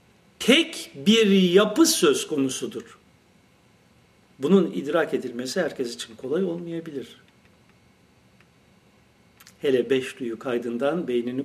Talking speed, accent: 90 wpm, native